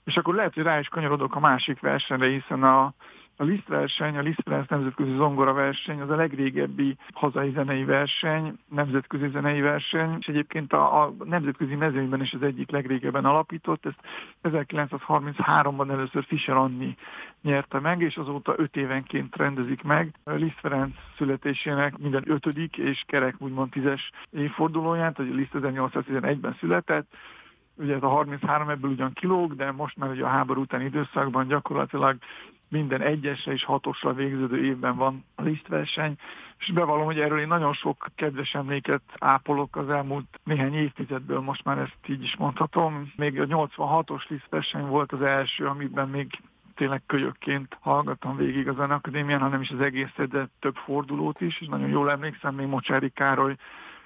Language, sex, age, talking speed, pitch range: Hungarian, male, 50-69, 160 wpm, 135-150 Hz